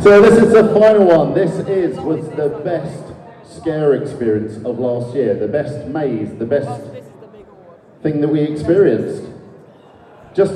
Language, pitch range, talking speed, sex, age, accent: English, 130-170 Hz, 150 wpm, male, 40-59, British